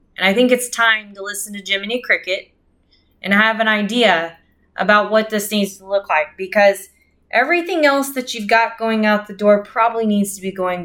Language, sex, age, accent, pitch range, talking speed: English, female, 20-39, American, 185-250 Hz, 200 wpm